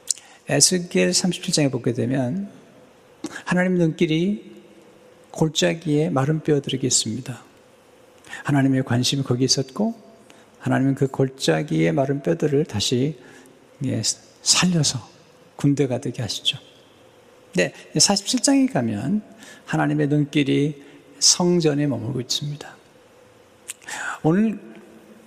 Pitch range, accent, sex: 130-165 Hz, native, male